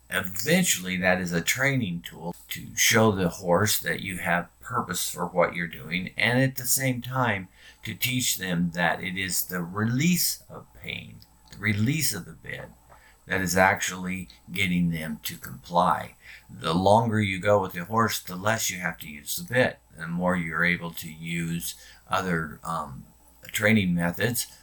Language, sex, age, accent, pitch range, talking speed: English, male, 50-69, American, 85-105 Hz, 170 wpm